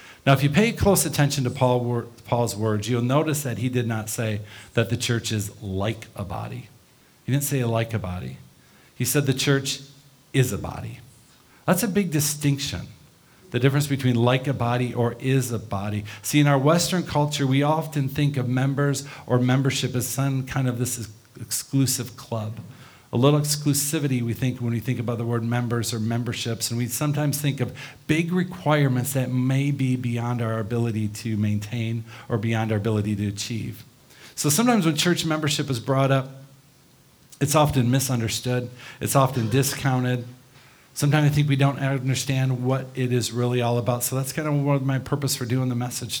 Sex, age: male, 50-69